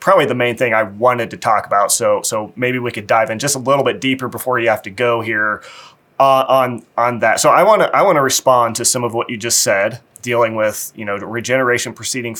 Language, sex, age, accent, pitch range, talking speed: English, male, 30-49, American, 110-130 Hz, 255 wpm